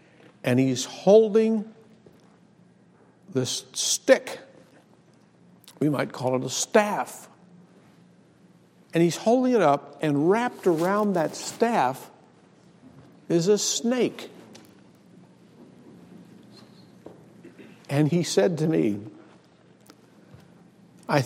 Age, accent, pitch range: 60-79, American, 115-175 Hz